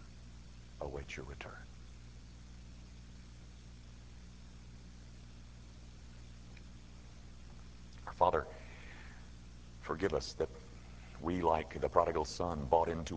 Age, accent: 60-79, American